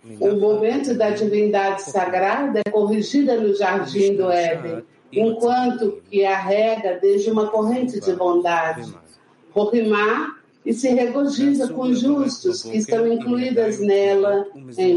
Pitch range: 185-240 Hz